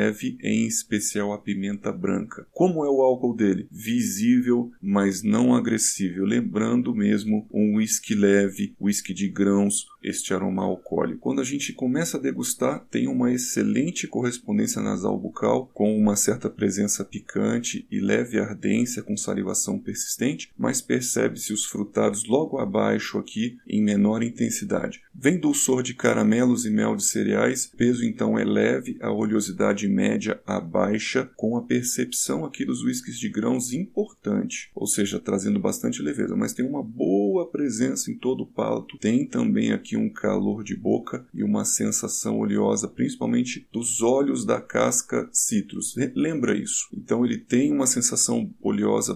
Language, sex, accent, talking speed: Portuguese, male, Brazilian, 150 wpm